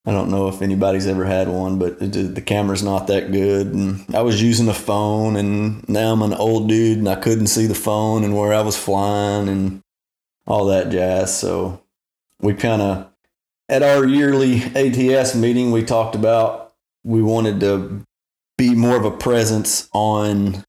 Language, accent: English, American